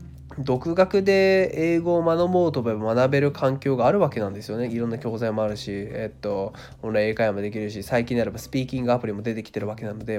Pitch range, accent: 110-145 Hz, native